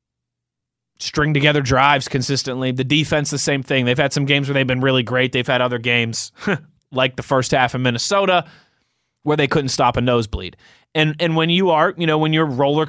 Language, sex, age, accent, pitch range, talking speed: English, male, 20-39, American, 120-150 Hz, 210 wpm